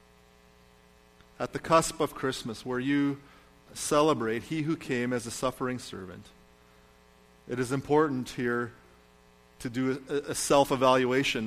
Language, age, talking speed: English, 40-59, 125 wpm